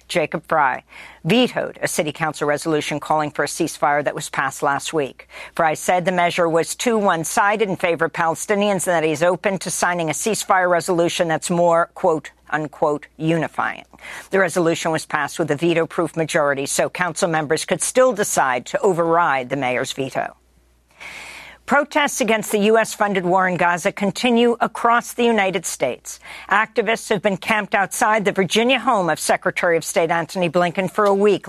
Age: 50-69